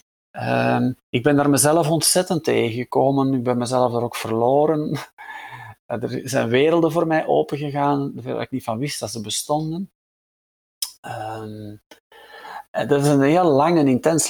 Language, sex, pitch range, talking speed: Dutch, male, 115-145 Hz, 140 wpm